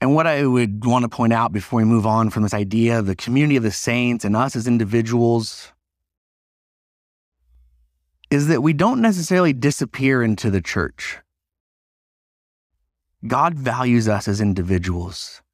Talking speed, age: 150 wpm, 30-49